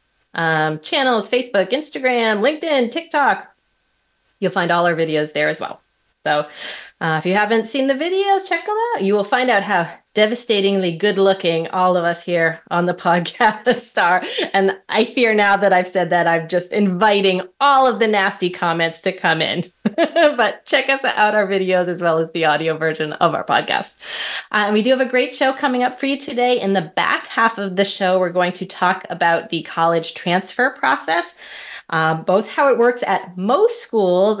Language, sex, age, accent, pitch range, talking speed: English, female, 30-49, American, 180-240 Hz, 190 wpm